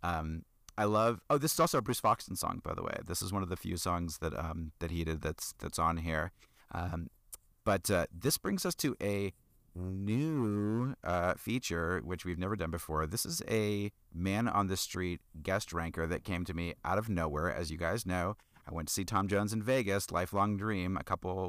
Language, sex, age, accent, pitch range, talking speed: English, male, 30-49, American, 85-105 Hz, 220 wpm